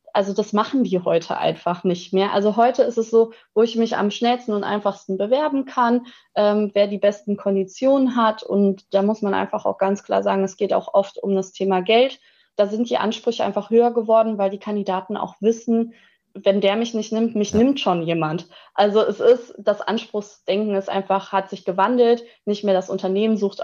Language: German